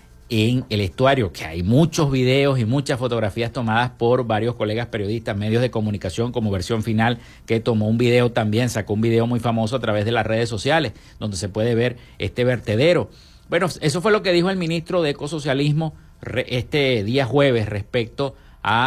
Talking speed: 185 wpm